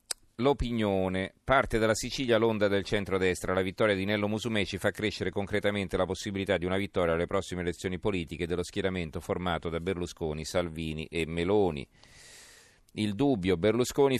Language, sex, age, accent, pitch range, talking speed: Italian, male, 40-59, native, 90-110 Hz, 150 wpm